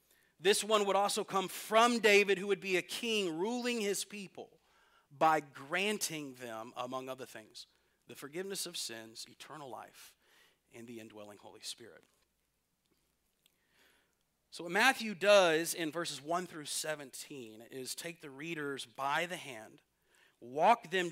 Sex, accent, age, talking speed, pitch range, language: male, American, 40-59, 140 wpm, 135-180 Hz, English